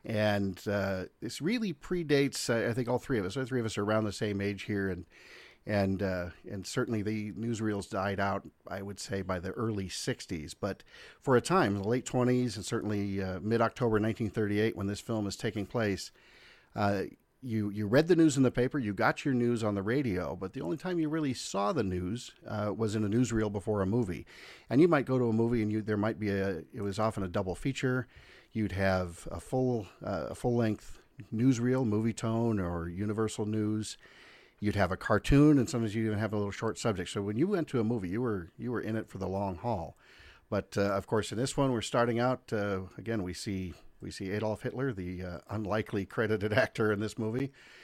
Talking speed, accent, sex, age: 220 wpm, American, male, 50-69